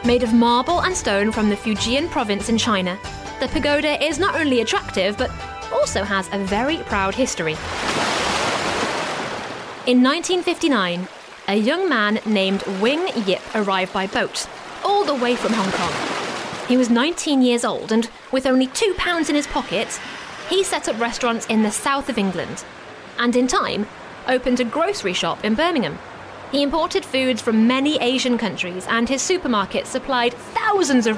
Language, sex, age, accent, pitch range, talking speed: English, female, 30-49, British, 220-290 Hz, 165 wpm